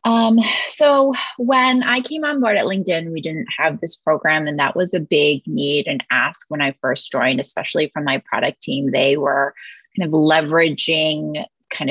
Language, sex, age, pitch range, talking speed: English, female, 20-39, 155-215 Hz, 185 wpm